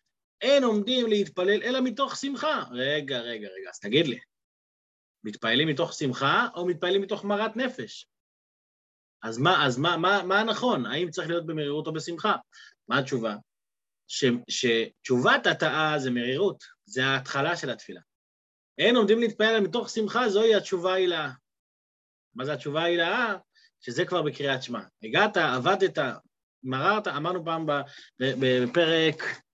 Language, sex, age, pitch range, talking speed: Hebrew, male, 30-49, 150-210 Hz, 140 wpm